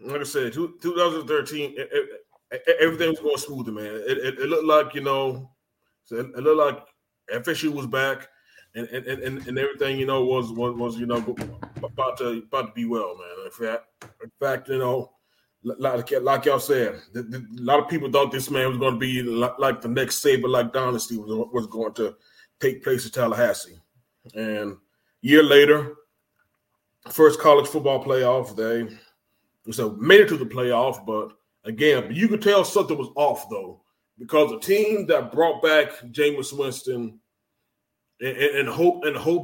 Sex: male